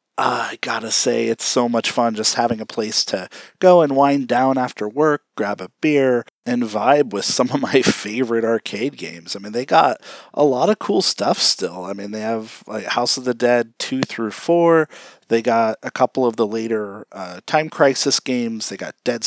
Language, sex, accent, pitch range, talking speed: English, male, American, 105-135 Hz, 210 wpm